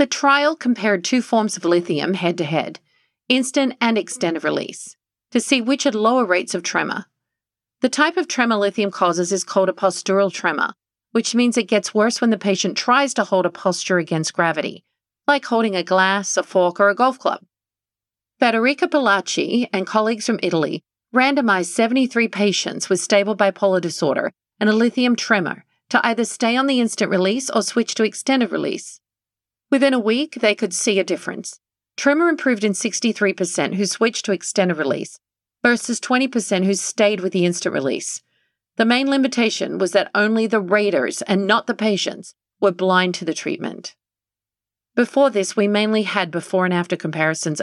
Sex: female